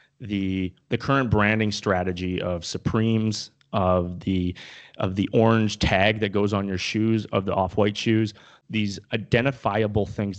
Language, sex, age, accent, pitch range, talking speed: English, male, 30-49, American, 100-120 Hz, 145 wpm